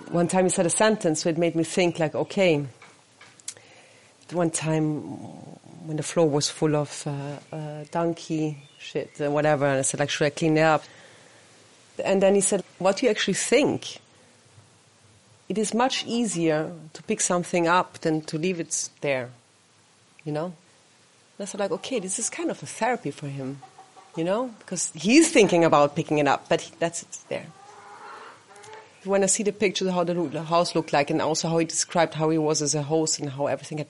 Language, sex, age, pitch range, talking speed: English, female, 40-59, 145-195 Hz, 200 wpm